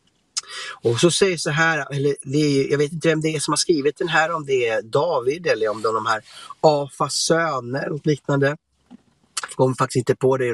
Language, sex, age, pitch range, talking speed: English, male, 30-49, 115-150 Hz, 205 wpm